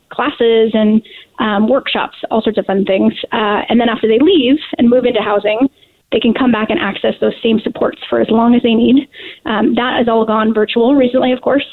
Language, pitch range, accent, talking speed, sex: English, 215-255 Hz, American, 220 wpm, female